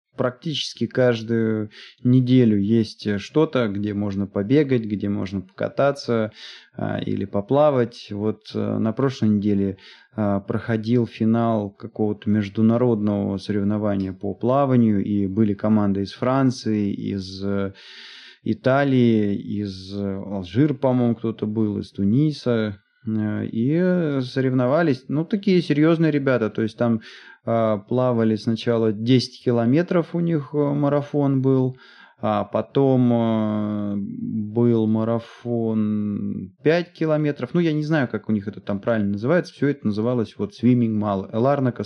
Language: Russian